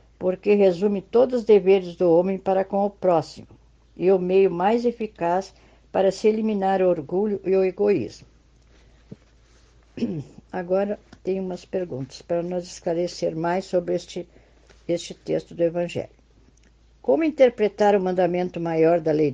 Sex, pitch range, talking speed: female, 175-210 Hz, 140 wpm